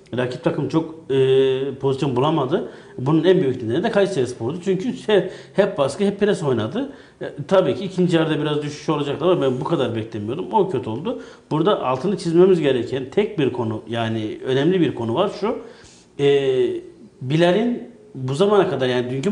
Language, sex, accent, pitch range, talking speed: Turkish, male, native, 130-180 Hz, 175 wpm